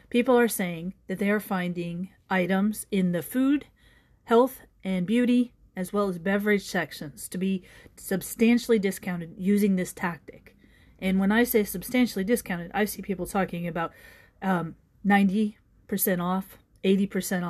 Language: English